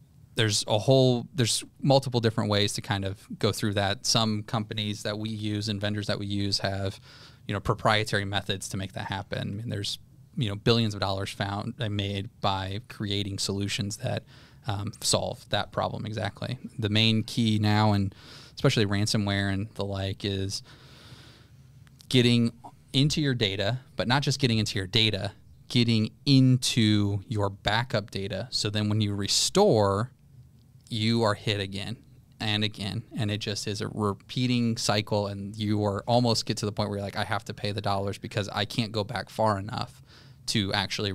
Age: 20-39